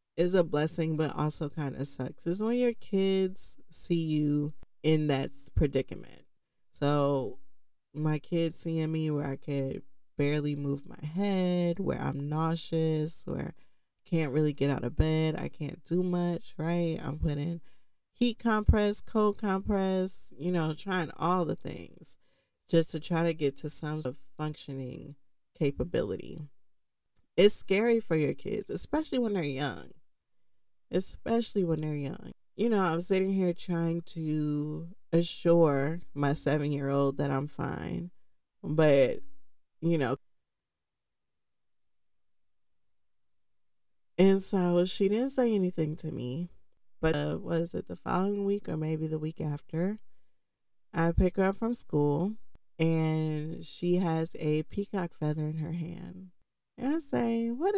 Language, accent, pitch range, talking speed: English, American, 145-190 Hz, 140 wpm